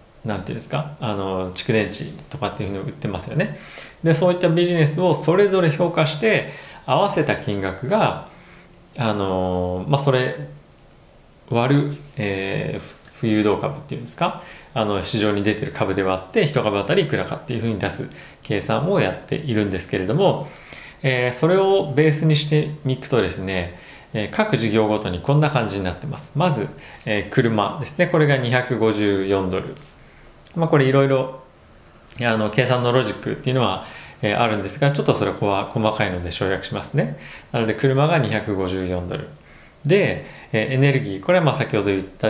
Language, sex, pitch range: Japanese, male, 100-150 Hz